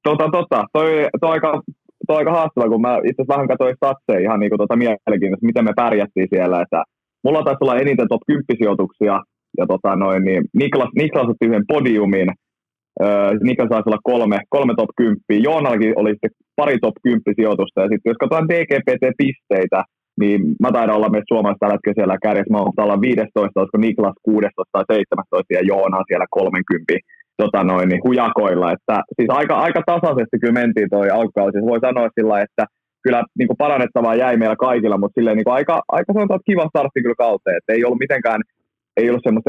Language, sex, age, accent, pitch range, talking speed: Finnish, male, 20-39, native, 105-125 Hz, 190 wpm